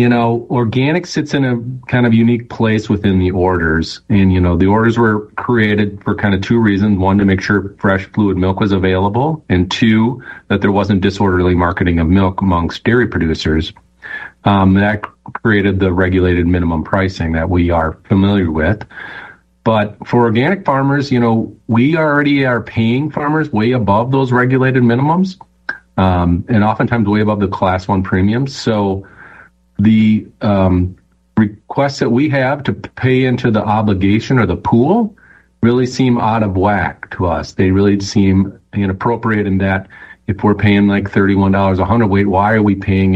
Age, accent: 40-59, American